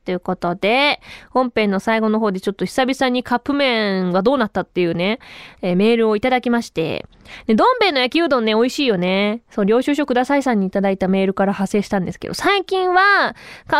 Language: Japanese